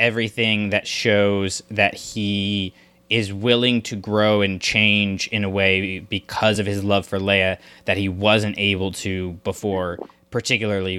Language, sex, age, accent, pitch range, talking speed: English, male, 20-39, American, 95-120 Hz, 145 wpm